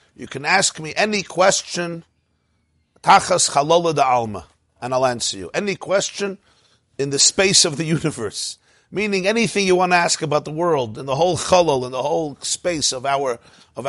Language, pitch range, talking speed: English, 130-190 Hz, 175 wpm